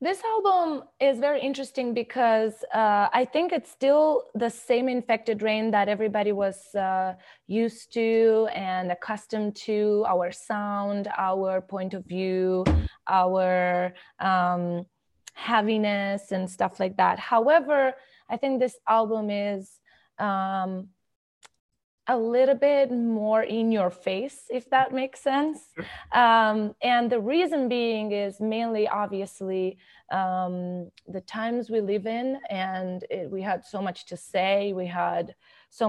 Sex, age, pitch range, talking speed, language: female, 20-39, 190-230 Hz, 135 wpm, English